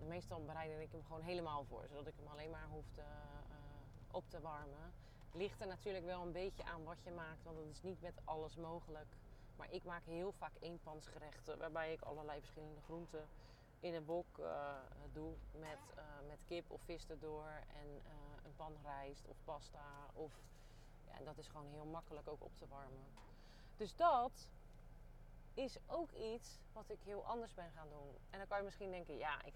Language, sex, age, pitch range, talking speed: Dutch, female, 30-49, 145-180 Hz, 195 wpm